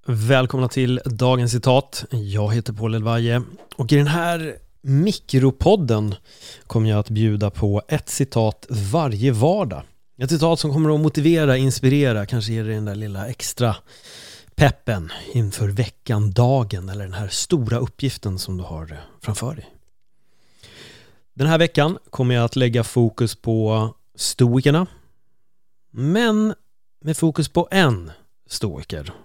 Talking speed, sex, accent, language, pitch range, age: 135 wpm, male, native, Swedish, 110-140 Hz, 30-49